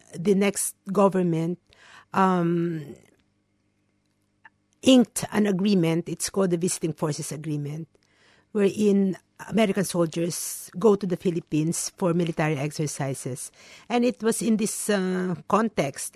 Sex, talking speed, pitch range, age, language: female, 110 wpm, 165-195 Hz, 50-69, English